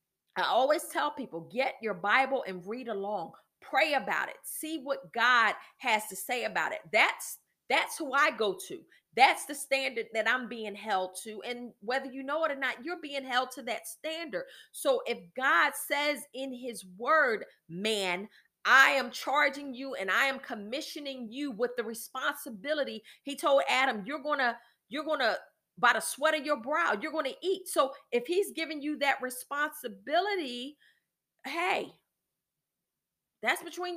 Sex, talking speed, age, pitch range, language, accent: female, 170 wpm, 40-59, 235-300 Hz, English, American